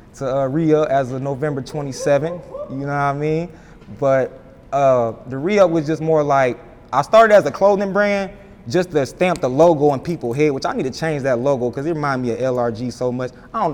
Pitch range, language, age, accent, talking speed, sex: 135-175 Hz, English, 20-39, American, 225 wpm, male